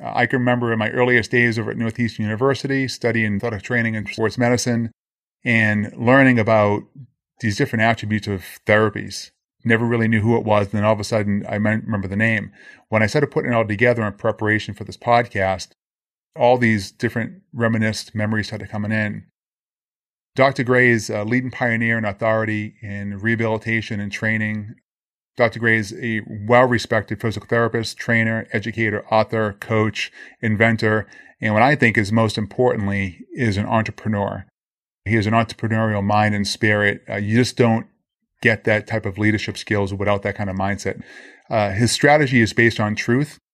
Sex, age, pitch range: male, 30-49, 105-120 Hz